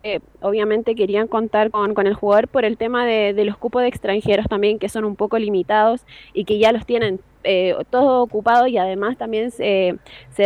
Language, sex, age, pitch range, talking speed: Spanish, female, 20-39, 195-235 Hz, 205 wpm